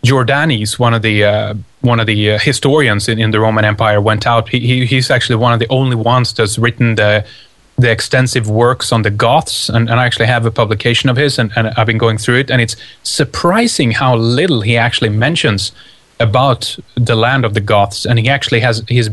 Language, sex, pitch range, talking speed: English, male, 110-125 Hz, 220 wpm